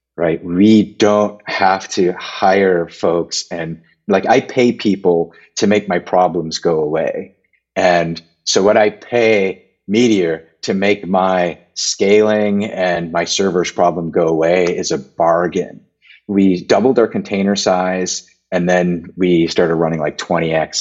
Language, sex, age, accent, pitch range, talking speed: English, male, 30-49, American, 85-100 Hz, 140 wpm